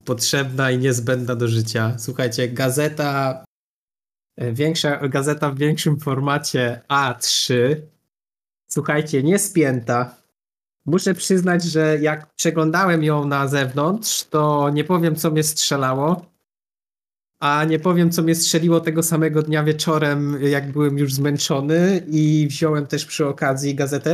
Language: Polish